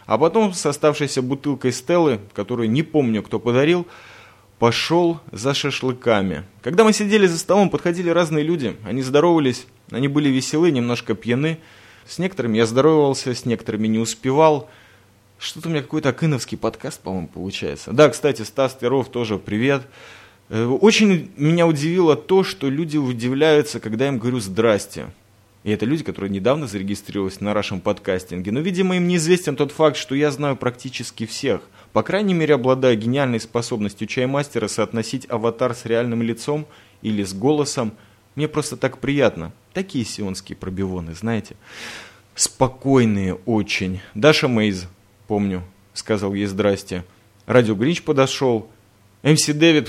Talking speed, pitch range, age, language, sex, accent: 145 wpm, 105-150 Hz, 20-39, Russian, male, native